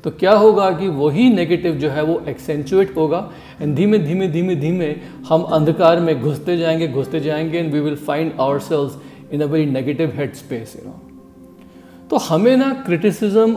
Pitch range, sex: 150-210 Hz, male